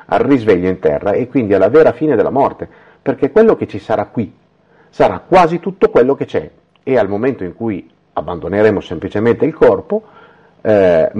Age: 50-69